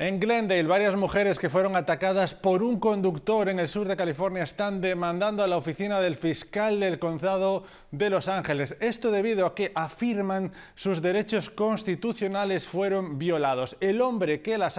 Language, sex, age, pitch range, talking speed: Spanish, male, 30-49, 165-200 Hz, 165 wpm